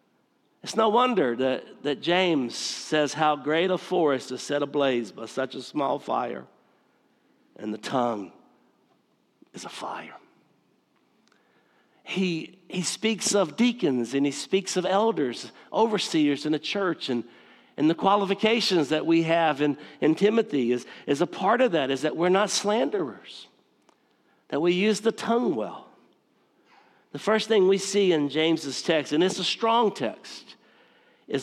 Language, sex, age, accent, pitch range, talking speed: English, male, 60-79, American, 150-195 Hz, 155 wpm